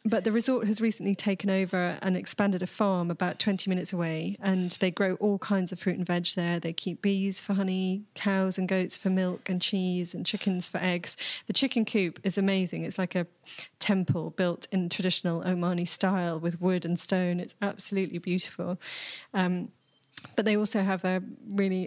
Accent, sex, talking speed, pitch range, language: British, female, 190 wpm, 180-200 Hz, English